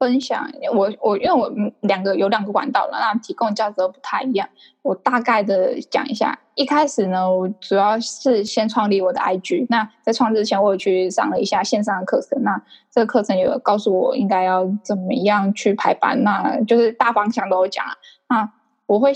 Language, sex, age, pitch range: Chinese, female, 10-29, 195-245 Hz